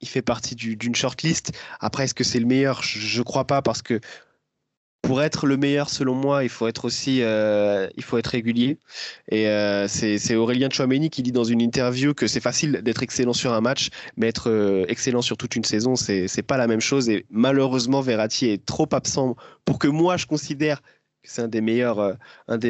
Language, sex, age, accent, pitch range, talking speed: French, male, 20-39, French, 110-135 Hz, 220 wpm